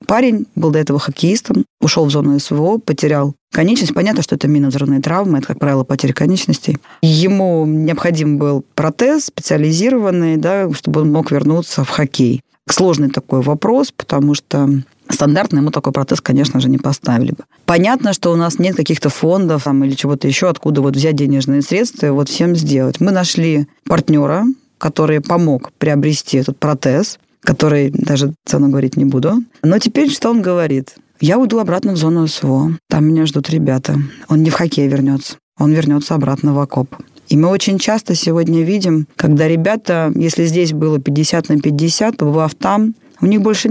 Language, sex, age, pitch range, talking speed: Russian, female, 20-39, 145-175 Hz, 170 wpm